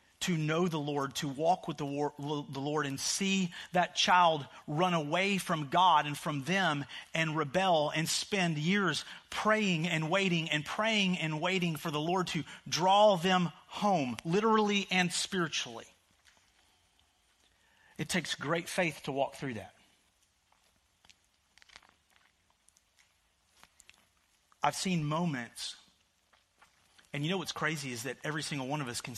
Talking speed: 140 wpm